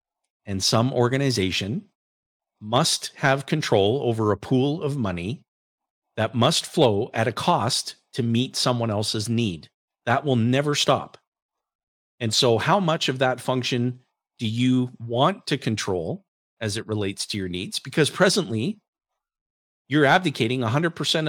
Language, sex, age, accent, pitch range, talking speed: English, male, 50-69, American, 115-175 Hz, 140 wpm